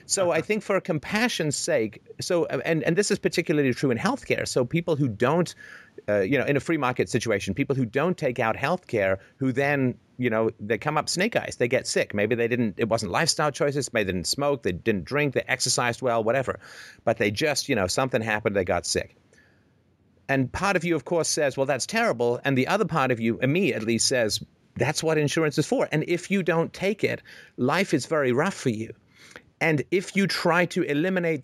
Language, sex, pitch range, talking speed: English, male, 120-165 Hz, 220 wpm